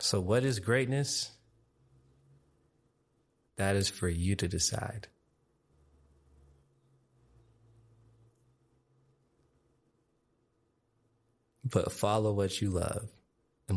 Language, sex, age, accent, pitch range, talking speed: English, male, 30-49, American, 90-115 Hz, 70 wpm